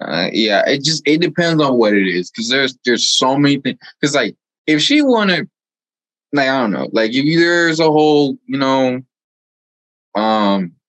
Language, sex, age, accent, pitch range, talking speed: English, male, 20-39, American, 90-130 Hz, 180 wpm